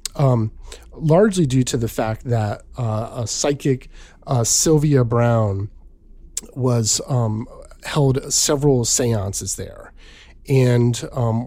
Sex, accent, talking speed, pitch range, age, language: male, American, 110 wpm, 105-125 Hz, 30-49, English